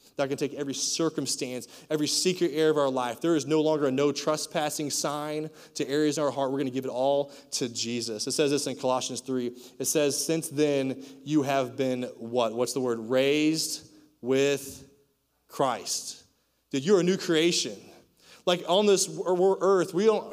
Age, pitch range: 20-39, 140-180 Hz